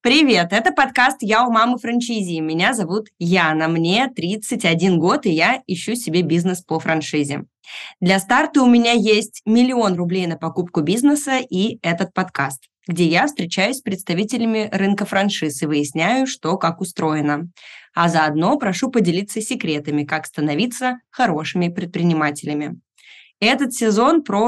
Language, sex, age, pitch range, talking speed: Russian, female, 20-39, 165-230 Hz, 140 wpm